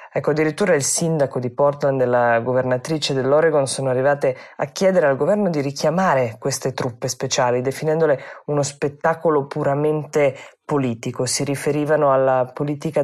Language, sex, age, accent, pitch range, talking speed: Italian, female, 20-39, native, 130-145 Hz, 140 wpm